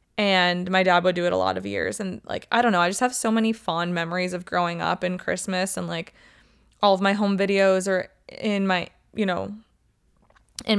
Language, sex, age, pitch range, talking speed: English, female, 20-39, 180-200 Hz, 220 wpm